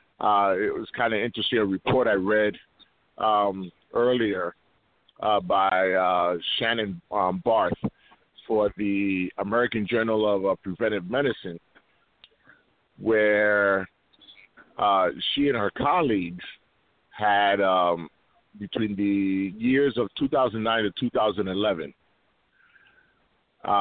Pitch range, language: 95-115 Hz, English